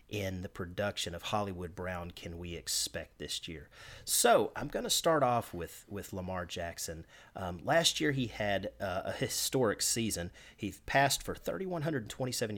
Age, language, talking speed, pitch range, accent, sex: 40-59, English, 160 wpm, 95-130 Hz, American, male